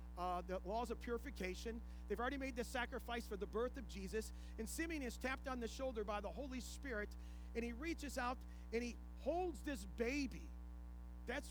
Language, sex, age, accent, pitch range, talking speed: English, male, 40-59, American, 180-275 Hz, 190 wpm